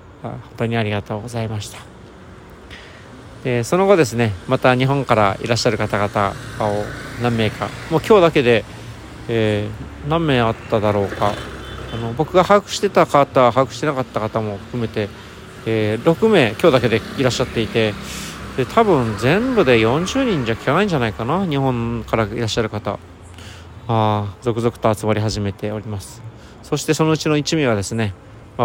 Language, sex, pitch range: Japanese, male, 105-125 Hz